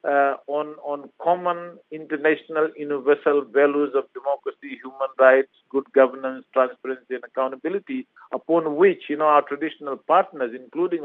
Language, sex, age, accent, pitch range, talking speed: English, male, 50-69, Indian, 135-160 Hz, 130 wpm